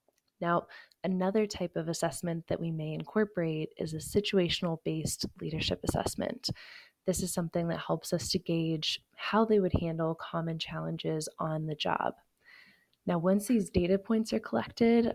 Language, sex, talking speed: English, female, 150 wpm